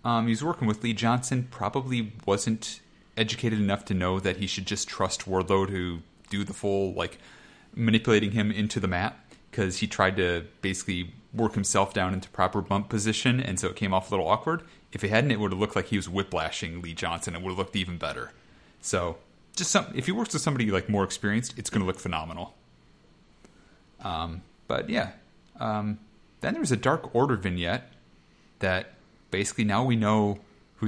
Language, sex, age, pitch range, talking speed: English, male, 30-49, 95-120 Hz, 195 wpm